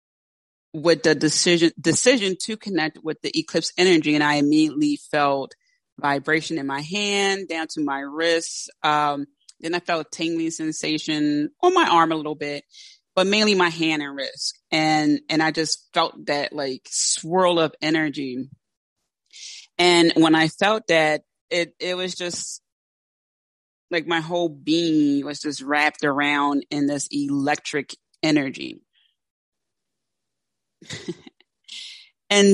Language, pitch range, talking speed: English, 150-180 Hz, 135 wpm